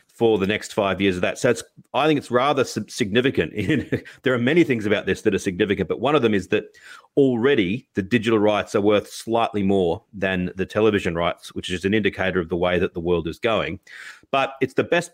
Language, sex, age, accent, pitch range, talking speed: English, male, 40-59, Australian, 95-125 Hz, 220 wpm